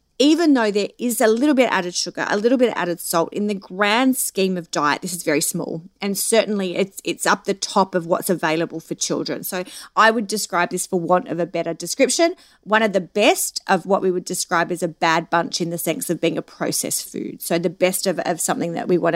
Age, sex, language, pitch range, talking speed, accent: 30-49, female, English, 175-225 Hz, 240 wpm, Australian